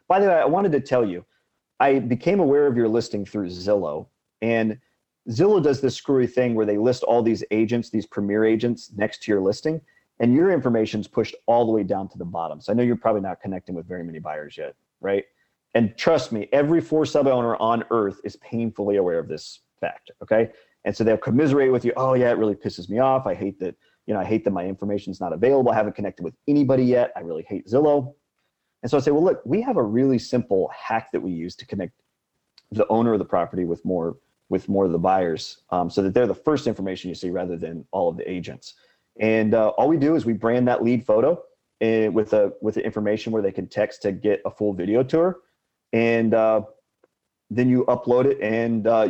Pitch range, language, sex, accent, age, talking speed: 100-125 Hz, English, male, American, 40-59, 235 wpm